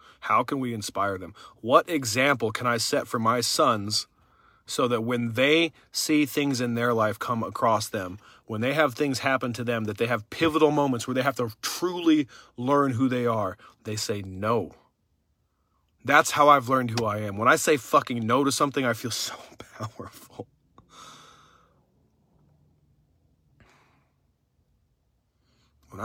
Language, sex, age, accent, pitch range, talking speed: English, male, 40-59, American, 105-130 Hz, 155 wpm